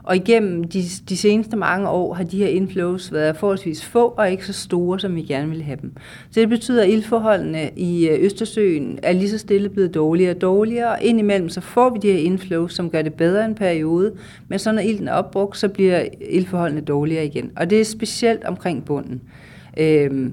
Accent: native